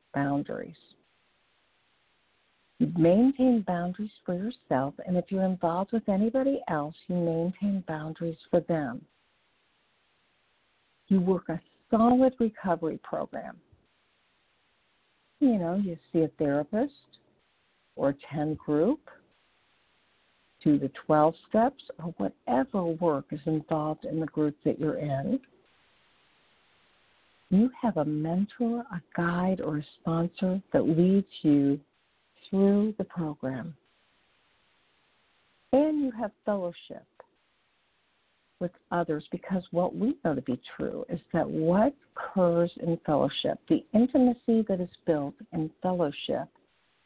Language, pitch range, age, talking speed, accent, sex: English, 160-210 Hz, 50-69, 115 wpm, American, female